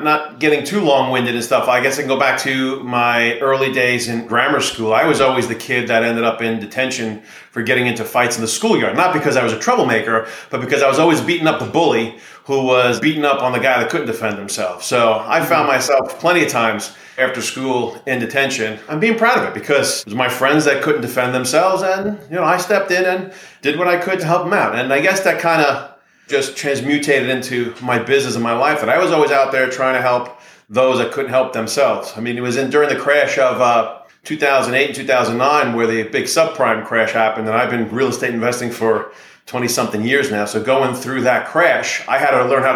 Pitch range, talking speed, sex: 115-140 Hz, 235 wpm, male